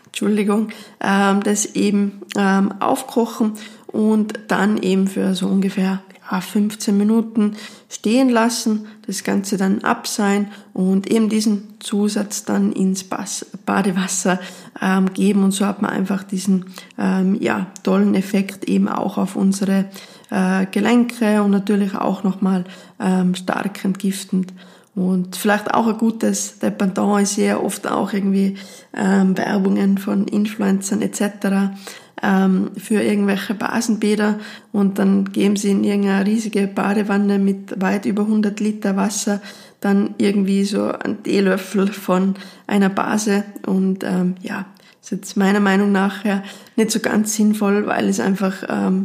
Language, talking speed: German, 125 wpm